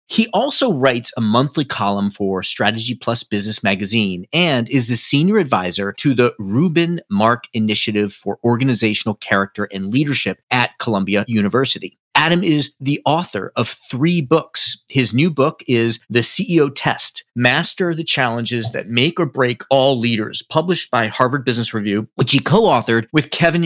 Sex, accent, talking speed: male, American, 155 wpm